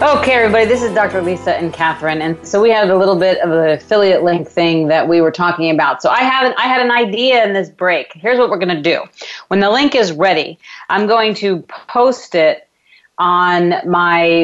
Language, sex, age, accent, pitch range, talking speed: English, female, 40-59, American, 155-195 Hz, 220 wpm